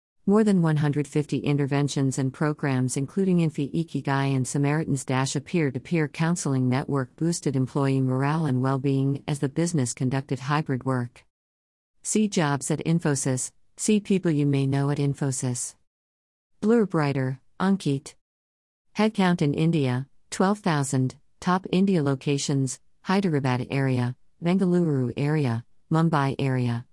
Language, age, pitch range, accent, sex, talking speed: Hindi, 50-69, 130-165 Hz, American, female, 125 wpm